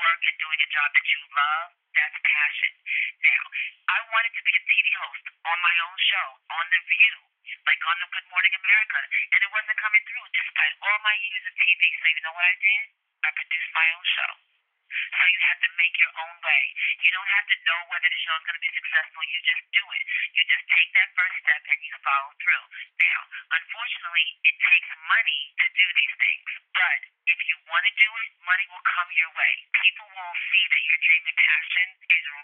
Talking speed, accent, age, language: 220 wpm, American, 40-59, English